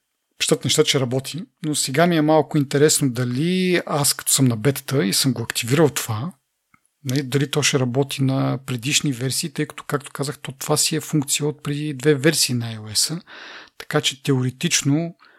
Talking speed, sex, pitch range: 175 wpm, male, 130-150 Hz